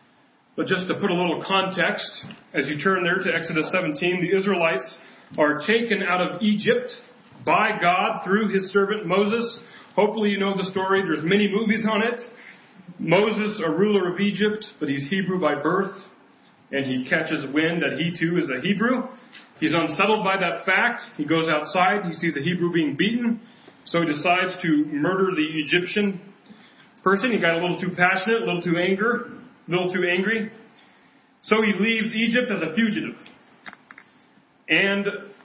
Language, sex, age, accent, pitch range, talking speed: English, male, 40-59, American, 170-215 Hz, 170 wpm